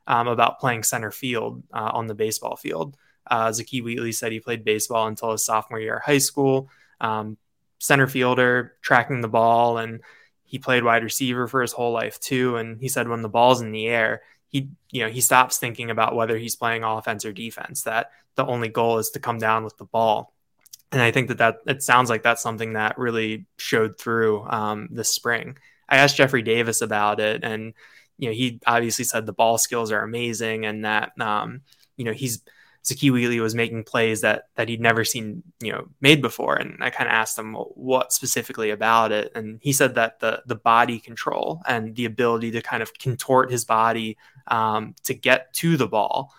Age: 20-39